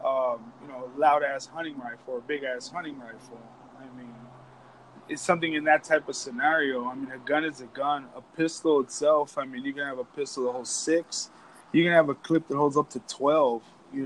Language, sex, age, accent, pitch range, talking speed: English, male, 20-39, American, 135-175 Hz, 215 wpm